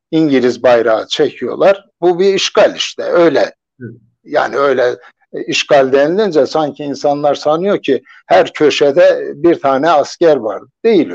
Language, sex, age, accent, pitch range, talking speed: Turkish, male, 60-79, native, 150-215 Hz, 125 wpm